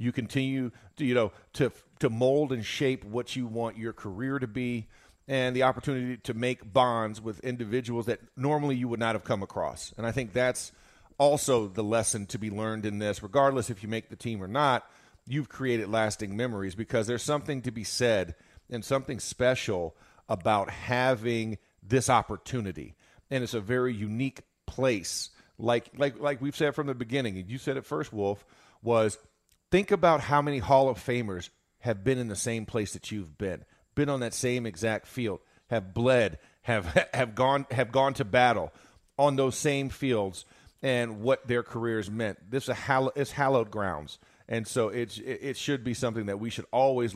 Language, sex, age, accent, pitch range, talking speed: English, male, 40-59, American, 110-130 Hz, 190 wpm